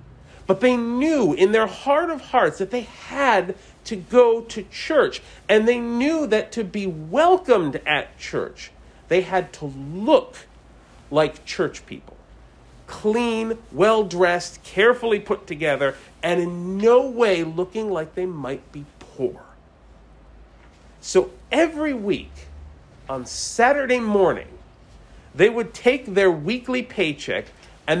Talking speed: 125 wpm